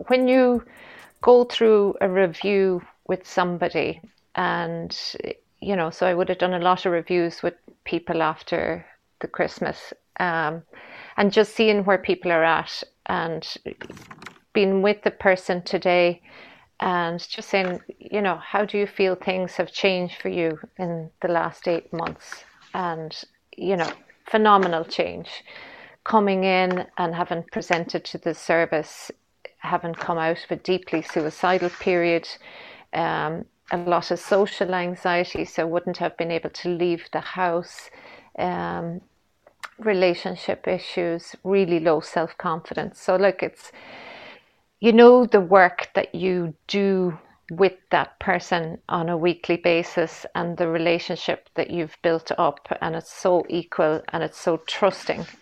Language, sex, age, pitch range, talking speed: English, female, 30-49, 170-195 Hz, 145 wpm